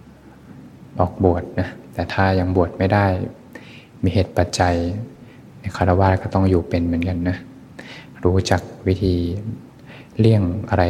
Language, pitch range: Thai, 90-100 Hz